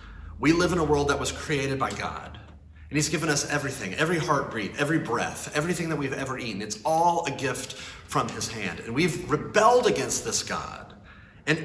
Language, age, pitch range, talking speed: English, 30-49, 130-175 Hz, 195 wpm